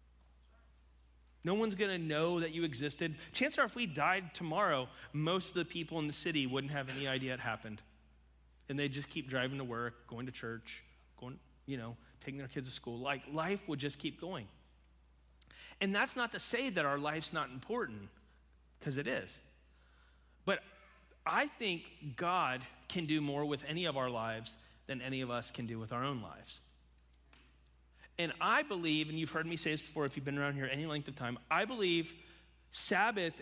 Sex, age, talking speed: male, 30-49, 195 wpm